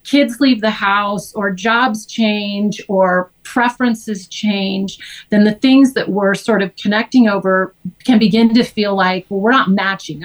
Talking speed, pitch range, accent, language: 165 wpm, 180-225 Hz, American, English